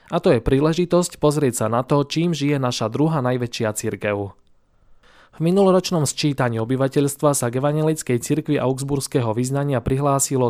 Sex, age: male, 20-39